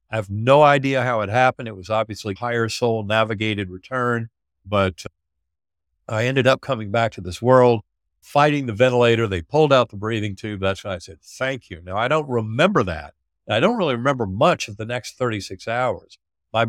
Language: English